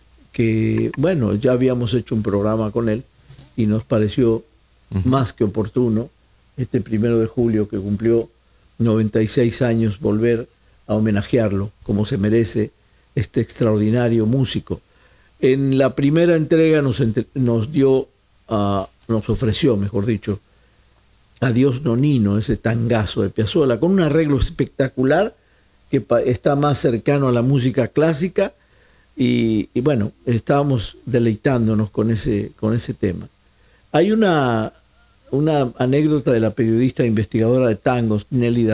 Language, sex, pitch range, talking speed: Spanish, male, 110-140 Hz, 135 wpm